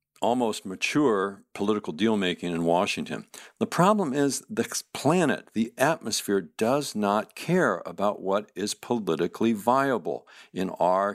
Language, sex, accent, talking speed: English, male, American, 125 wpm